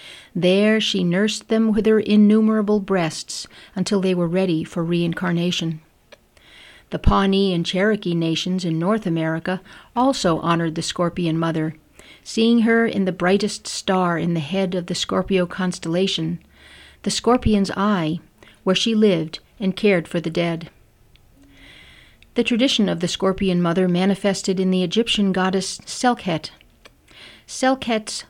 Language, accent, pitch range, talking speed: English, American, 170-205 Hz, 135 wpm